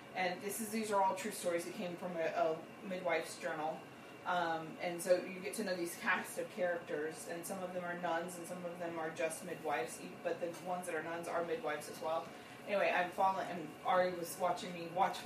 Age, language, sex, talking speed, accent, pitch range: 30-49, English, female, 230 wpm, American, 170-205 Hz